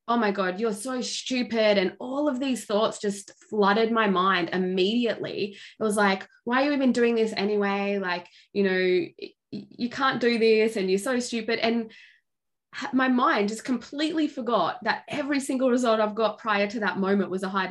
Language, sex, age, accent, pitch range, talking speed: English, female, 20-39, Australian, 175-220 Hz, 190 wpm